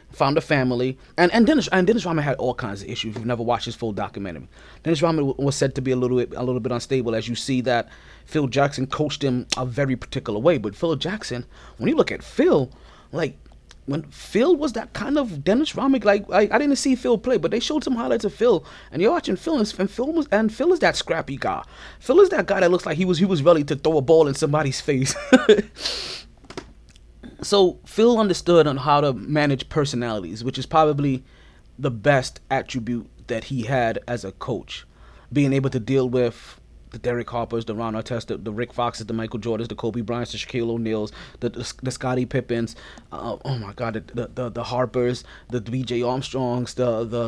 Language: English